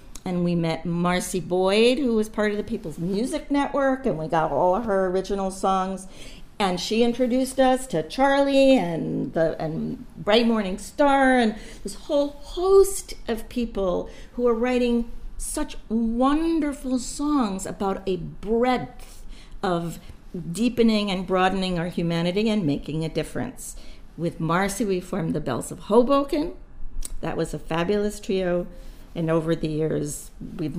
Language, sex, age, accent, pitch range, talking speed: English, female, 50-69, American, 170-230 Hz, 145 wpm